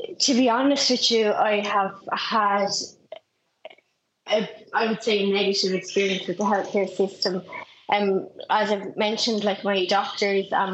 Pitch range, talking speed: 185-205 Hz, 150 wpm